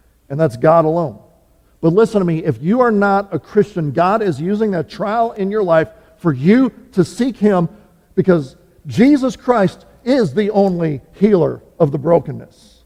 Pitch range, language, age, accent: 160-215 Hz, English, 50-69, American